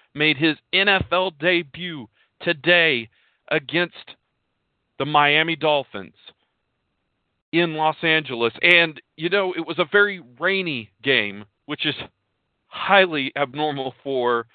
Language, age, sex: English, 40-59, male